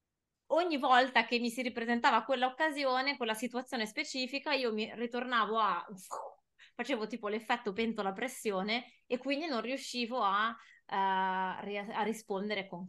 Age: 20-39